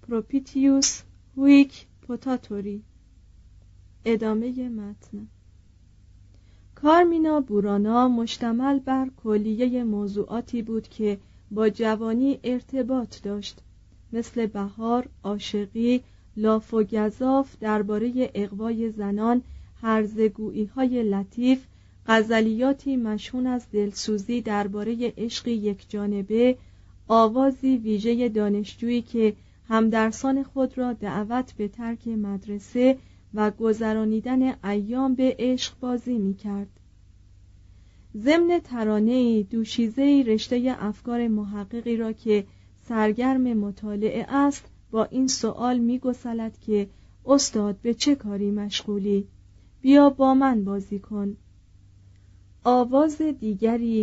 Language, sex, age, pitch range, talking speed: Persian, female, 40-59, 205-250 Hz, 90 wpm